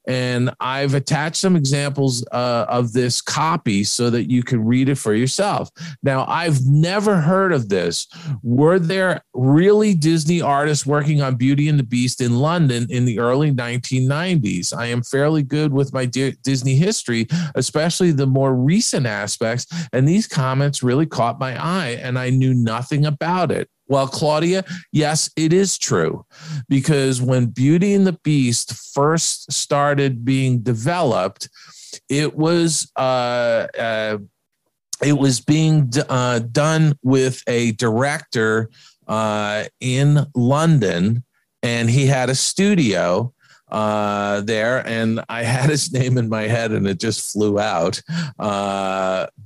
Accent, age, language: American, 40-59, English